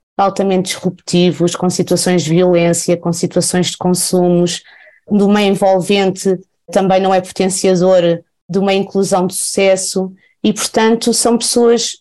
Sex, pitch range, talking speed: female, 170-195 Hz, 130 wpm